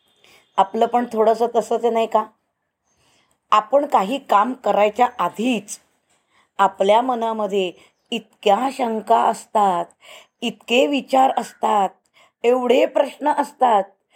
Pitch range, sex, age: 205-260 Hz, female, 20-39